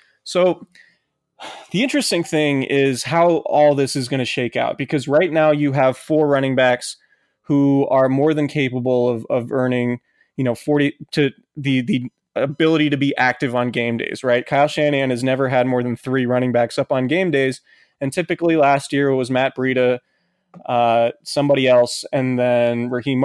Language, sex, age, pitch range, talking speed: English, male, 20-39, 125-150 Hz, 185 wpm